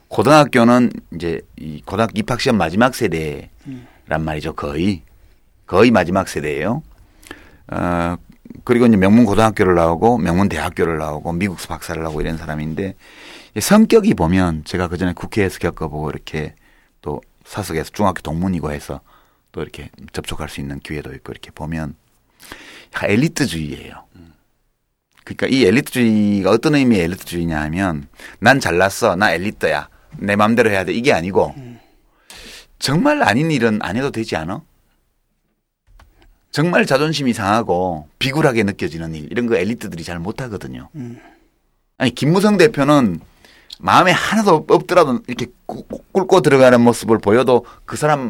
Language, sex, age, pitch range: Korean, male, 30-49, 80-130 Hz